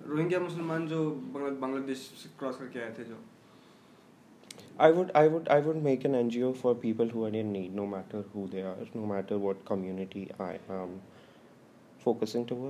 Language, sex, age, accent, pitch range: Hindi, male, 20-39, native, 105-125 Hz